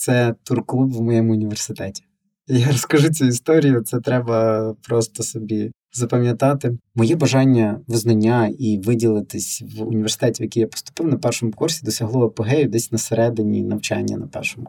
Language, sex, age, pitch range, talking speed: Ukrainian, male, 20-39, 110-135 Hz, 145 wpm